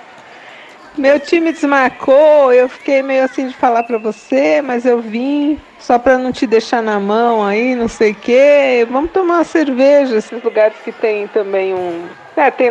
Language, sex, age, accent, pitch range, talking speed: Portuguese, female, 50-69, Brazilian, 215-285 Hz, 175 wpm